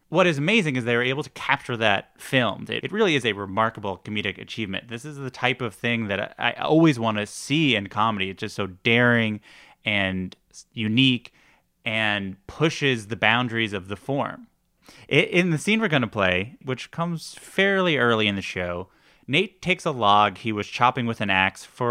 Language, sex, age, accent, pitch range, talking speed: English, male, 30-49, American, 100-135 Hz, 195 wpm